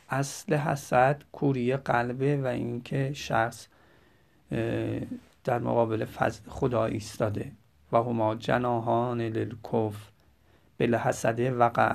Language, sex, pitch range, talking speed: Persian, male, 115-135 Hz, 95 wpm